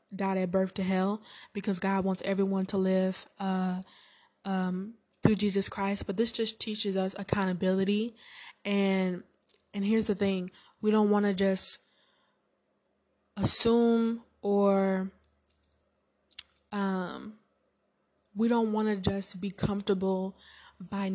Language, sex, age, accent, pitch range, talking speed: English, female, 10-29, American, 185-200 Hz, 120 wpm